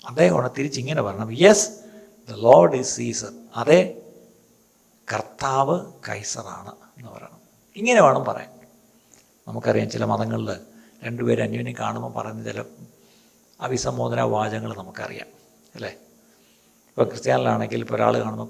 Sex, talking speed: male, 110 wpm